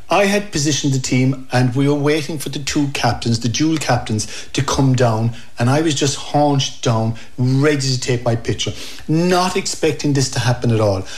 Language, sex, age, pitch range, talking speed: English, male, 60-79, 120-145 Hz, 200 wpm